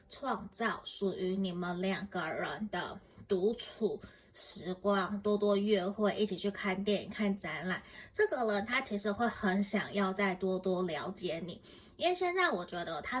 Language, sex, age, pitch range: Chinese, female, 20-39, 190-225 Hz